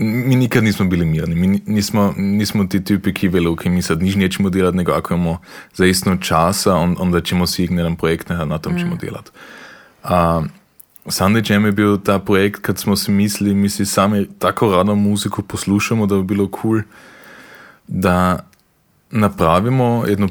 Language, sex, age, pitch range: Croatian, male, 20-39, 90-110 Hz